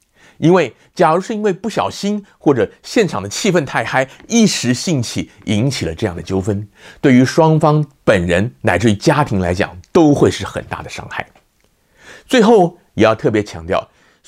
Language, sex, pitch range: Chinese, male, 105-165 Hz